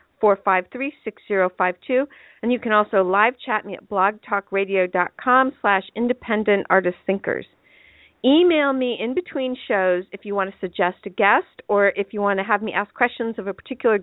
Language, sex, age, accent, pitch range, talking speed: English, female, 50-69, American, 190-230 Hz, 185 wpm